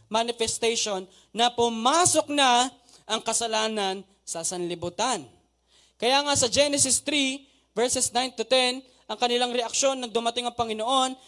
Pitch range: 230-305 Hz